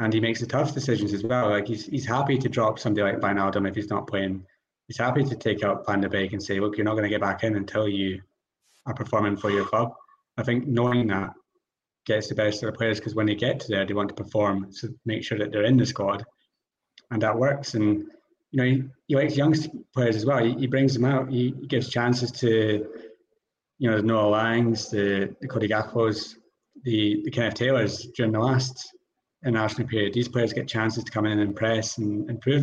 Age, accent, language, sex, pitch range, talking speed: 30-49, British, English, male, 105-130 Hz, 230 wpm